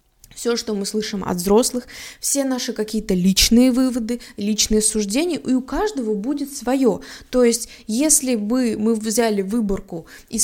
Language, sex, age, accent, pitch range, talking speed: Russian, female, 20-39, native, 200-255 Hz, 150 wpm